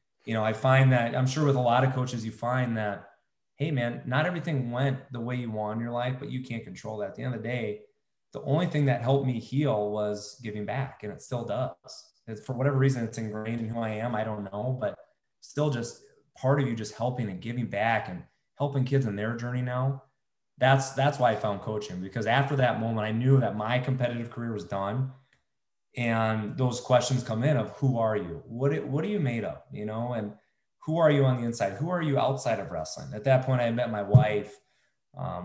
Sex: male